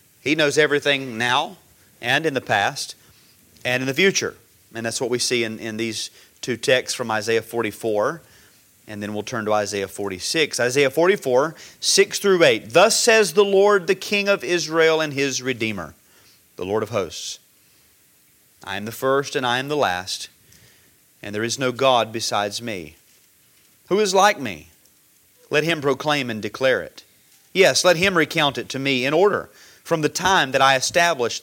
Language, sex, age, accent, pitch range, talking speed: English, male, 30-49, American, 120-170 Hz, 180 wpm